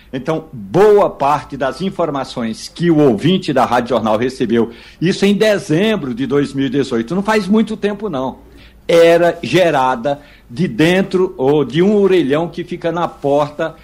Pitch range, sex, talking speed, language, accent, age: 140-175 Hz, male, 145 wpm, Portuguese, Brazilian, 60-79